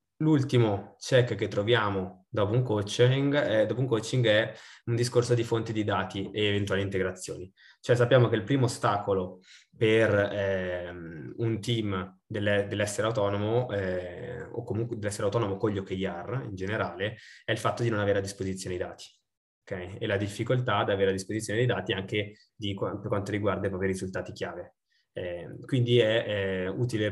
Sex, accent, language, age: male, native, Italian, 20-39